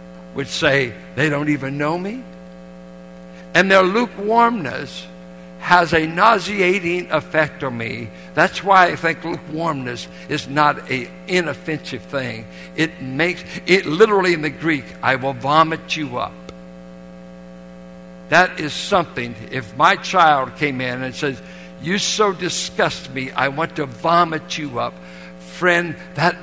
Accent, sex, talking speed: American, male, 135 wpm